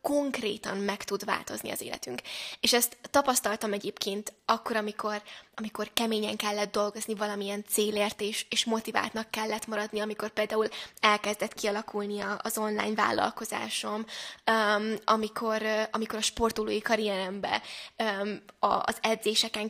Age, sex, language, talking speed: 10-29, female, Hungarian, 120 wpm